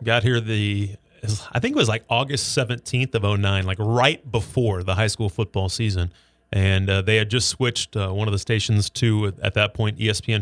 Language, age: English, 30-49